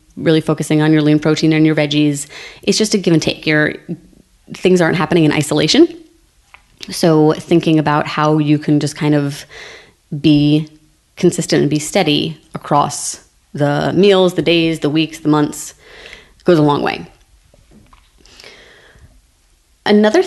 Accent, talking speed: American, 145 wpm